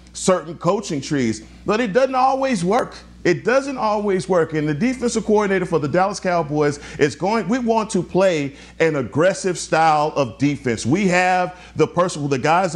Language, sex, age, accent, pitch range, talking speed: English, male, 40-59, American, 155-210 Hz, 180 wpm